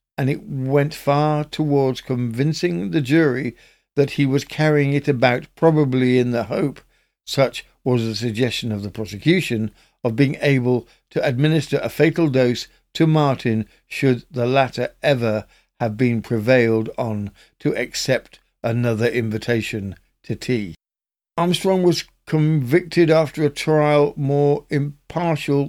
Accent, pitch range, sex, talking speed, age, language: British, 115-150 Hz, male, 135 wpm, 60-79, English